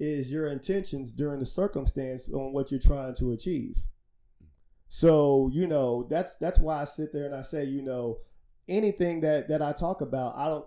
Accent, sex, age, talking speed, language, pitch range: American, male, 30-49, 190 wpm, English, 130-155 Hz